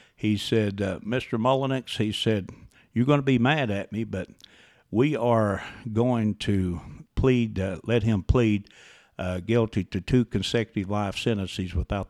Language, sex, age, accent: English, male, 60-79, American